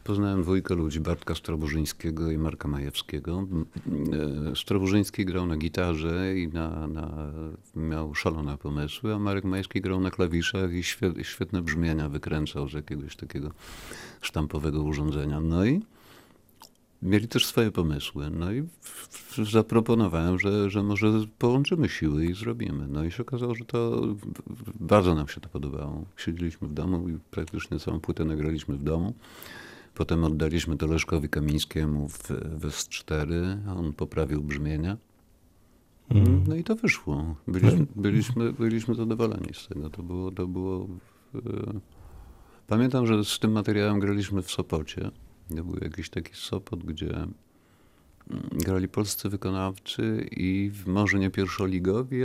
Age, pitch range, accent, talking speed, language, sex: 50-69, 80-105 Hz, native, 130 wpm, Polish, male